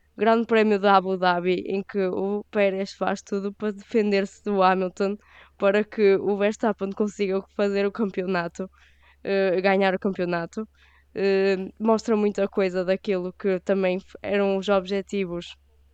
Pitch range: 185-230 Hz